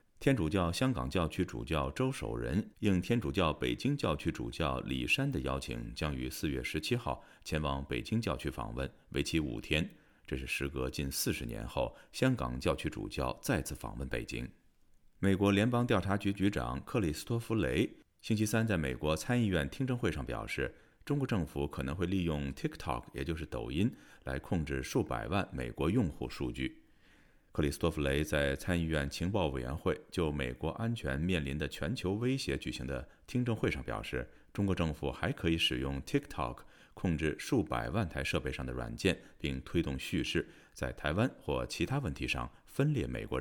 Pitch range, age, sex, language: 70-100 Hz, 30-49, male, Chinese